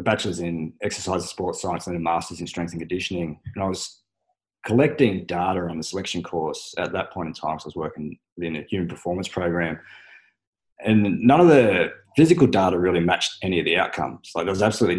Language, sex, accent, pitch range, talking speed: English, male, Australian, 85-100 Hz, 210 wpm